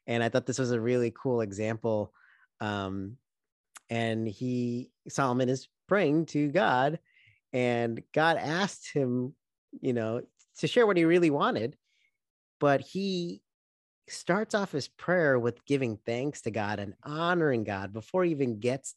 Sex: male